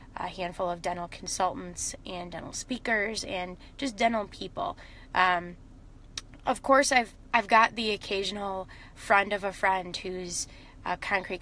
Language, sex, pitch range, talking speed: English, female, 180-215 Hz, 140 wpm